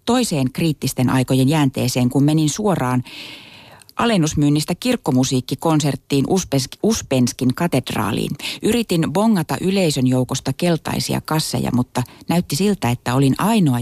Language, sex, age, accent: Finnish, female, 30-49, native